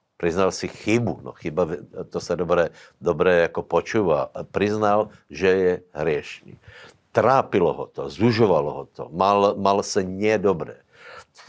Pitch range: 90-105 Hz